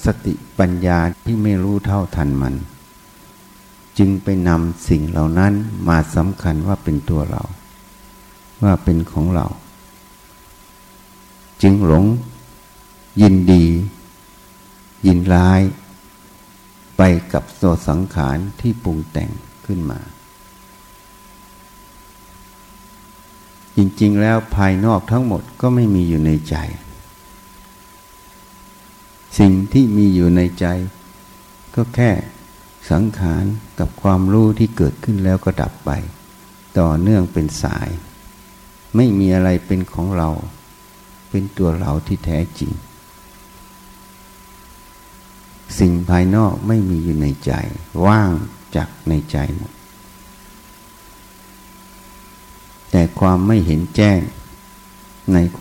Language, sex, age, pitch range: Thai, male, 60-79, 85-100 Hz